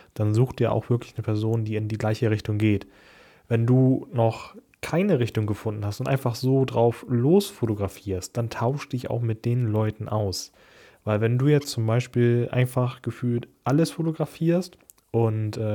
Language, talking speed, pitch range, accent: German, 170 wpm, 110-140 Hz, German